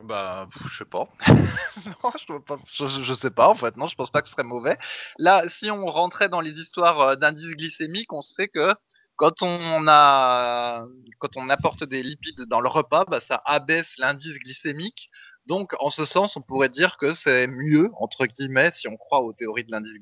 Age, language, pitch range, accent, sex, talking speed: 20-39, French, 115-155 Hz, French, male, 200 wpm